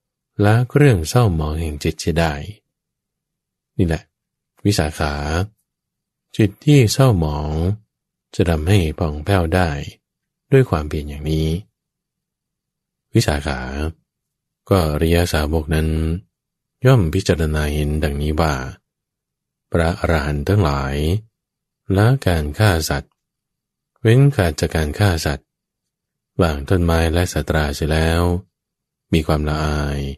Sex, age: male, 20-39